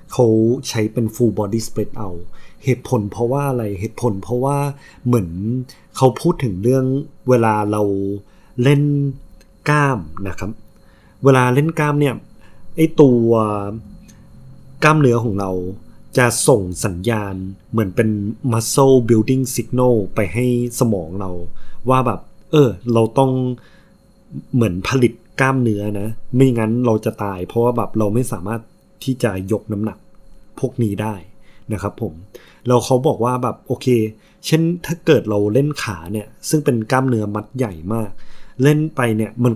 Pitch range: 105-130 Hz